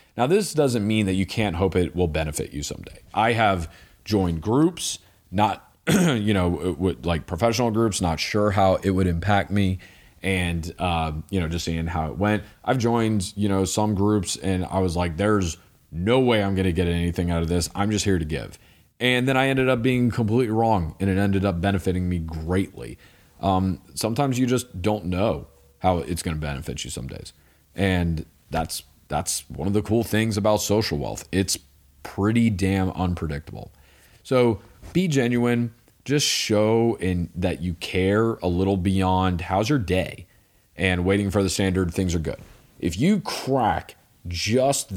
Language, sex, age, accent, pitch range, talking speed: English, male, 30-49, American, 85-110 Hz, 180 wpm